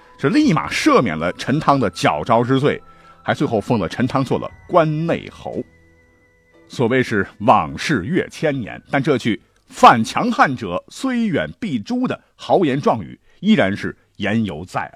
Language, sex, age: Chinese, male, 50-69